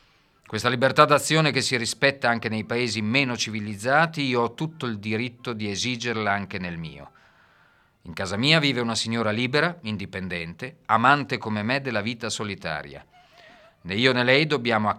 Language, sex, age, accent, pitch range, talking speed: Italian, male, 40-59, native, 100-130 Hz, 165 wpm